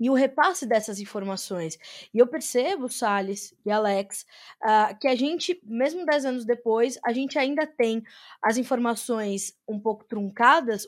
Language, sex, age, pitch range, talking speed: Portuguese, female, 20-39, 225-290 Hz, 150 wpm